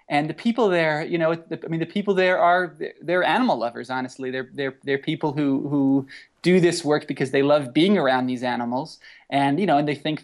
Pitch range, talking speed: 130-155 Hz, 235 wpm